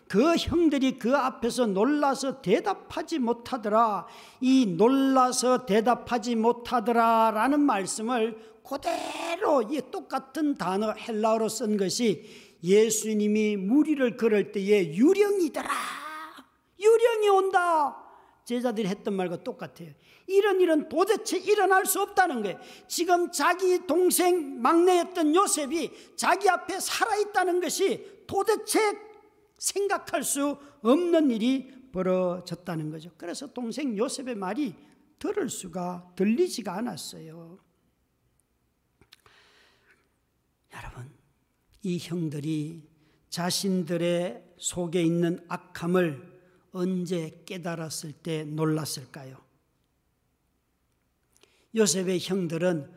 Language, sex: Korean, male